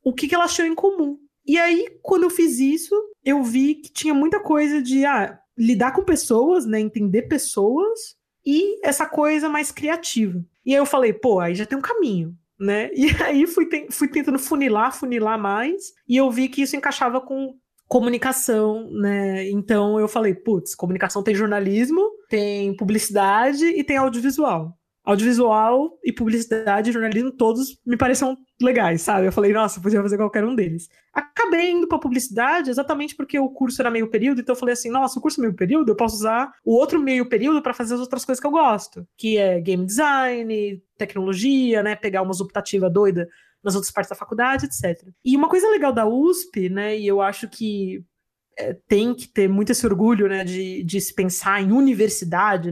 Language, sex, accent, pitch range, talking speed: Portuguese, female, Brazilian, 205-290 Hz, 190 wpm